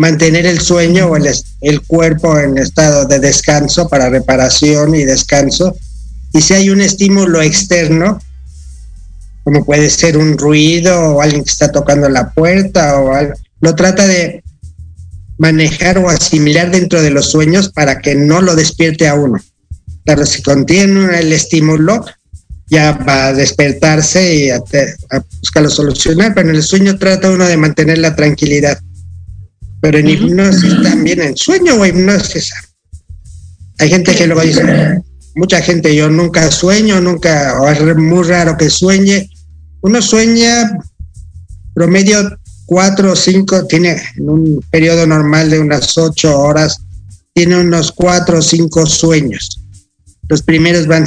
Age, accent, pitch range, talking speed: 50-69, Mexican, 140-175 Hz, 145 wpm